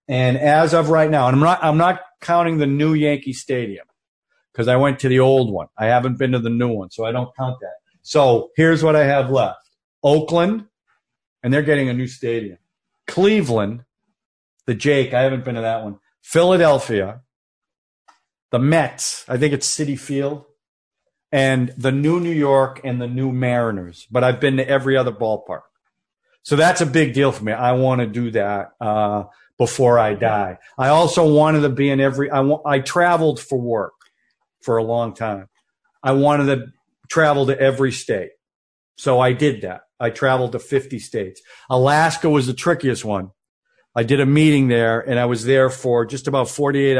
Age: 40-59